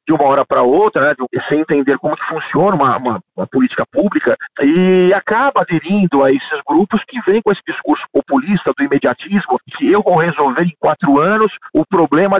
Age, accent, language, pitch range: 50-69, Brazilian, Portuguese, 160-230 Hz